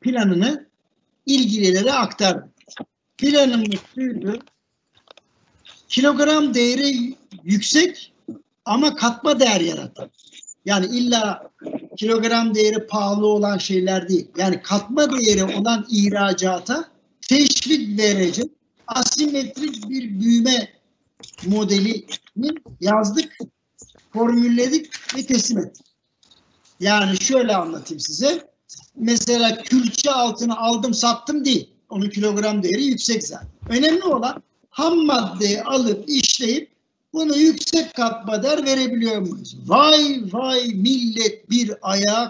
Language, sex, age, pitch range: Turkish, male, 60-79, 200-260 Hz